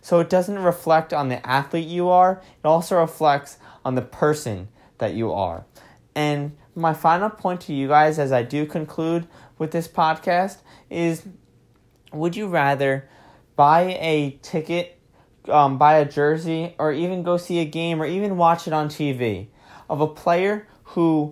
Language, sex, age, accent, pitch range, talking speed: English, male, 20-39, American, 140-170 Hz, 165 wpm